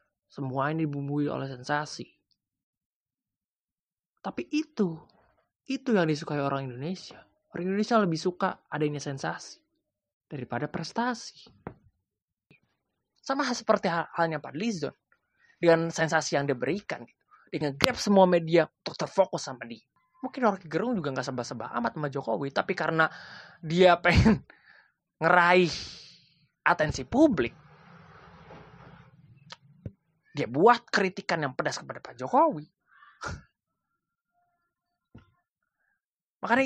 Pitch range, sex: 145-205 Hz, male